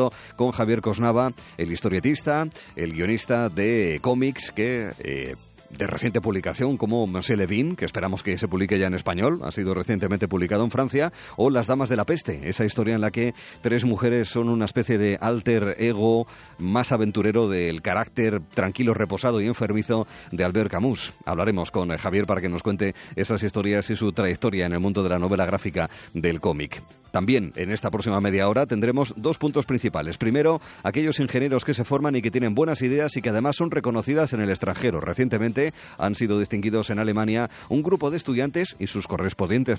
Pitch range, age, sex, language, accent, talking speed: 100-125 Hz, 40-59, male, Spanish, Spanish, 185 wpm